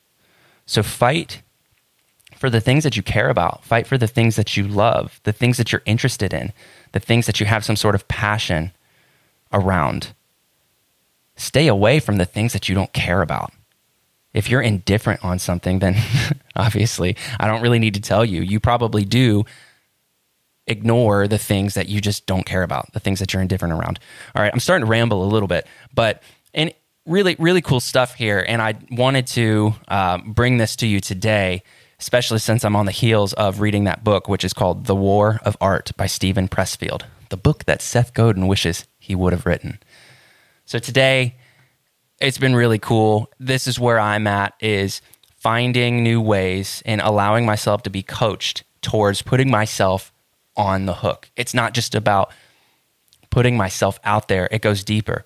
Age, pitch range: 20-39, 100-120 Hz